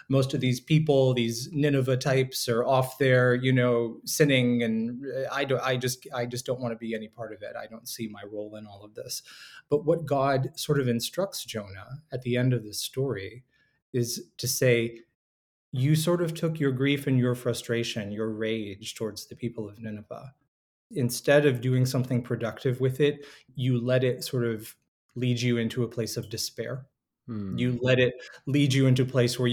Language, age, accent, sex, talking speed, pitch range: English, 20-39, American, male, 195 wpm, 115-140 Hz